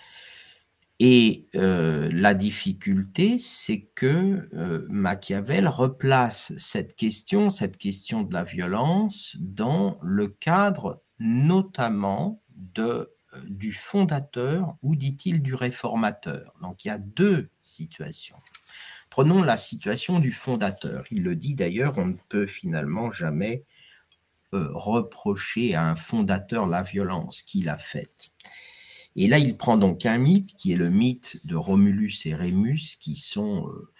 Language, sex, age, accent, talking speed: French, male, 50-69, French, 130 wpm